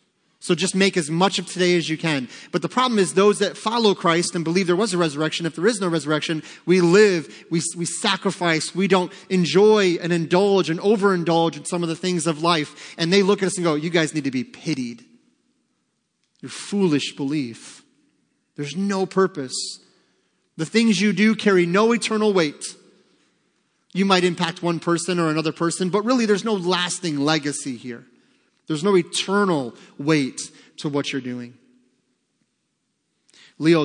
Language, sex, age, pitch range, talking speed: English, male, 30-49, 150-195 Hz, 175 wpm